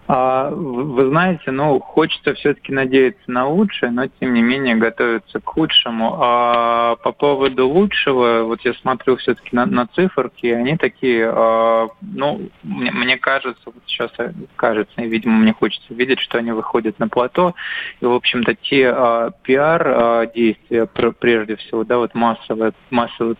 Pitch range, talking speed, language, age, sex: 115-130 Hz, 155 wpm, Russian, 20-39, male